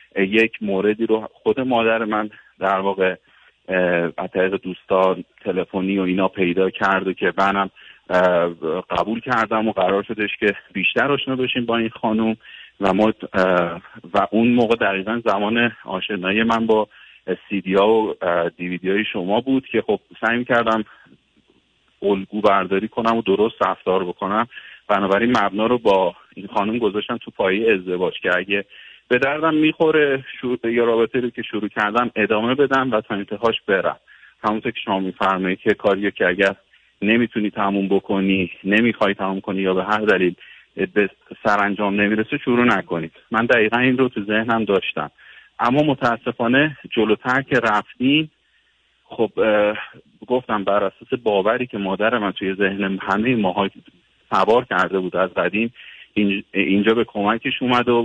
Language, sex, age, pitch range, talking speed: Persian, male, 30-49, 95-115 Hz, 145 wpm